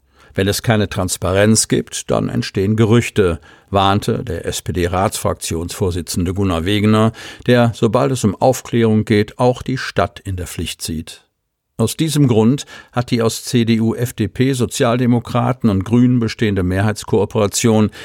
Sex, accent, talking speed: male, German, 130 wpm